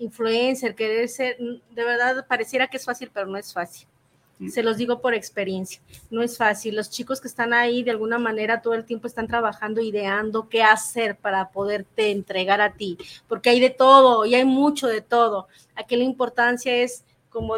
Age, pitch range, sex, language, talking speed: 30-49, 215-245 Hz, female, Spanish, 195 wpm